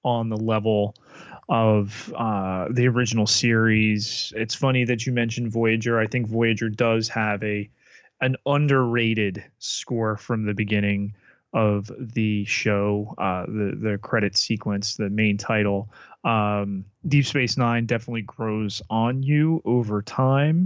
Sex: male